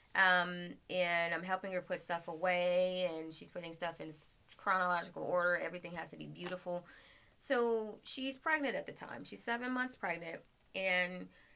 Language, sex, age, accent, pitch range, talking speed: English, female, 20-39, American, 165-190 Hz, 160 wpm